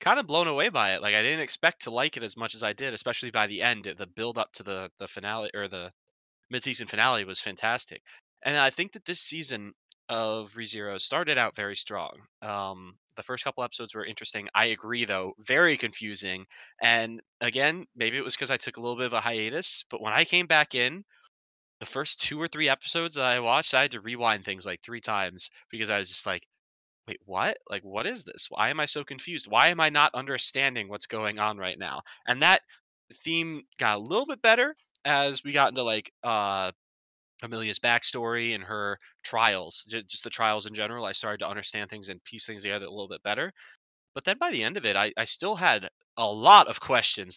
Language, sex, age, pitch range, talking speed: English, male, 20-39, 105-135 Hz, 220 wpm